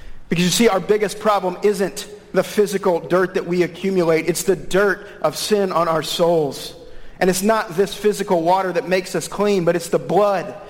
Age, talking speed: 40-59, 195 wpm